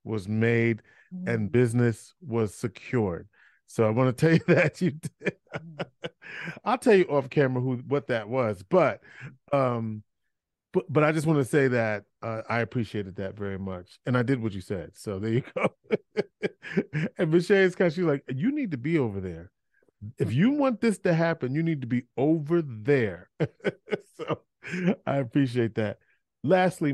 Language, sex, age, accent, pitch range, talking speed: English, male, 30-49, American, 110-145 Hz, 180 wpm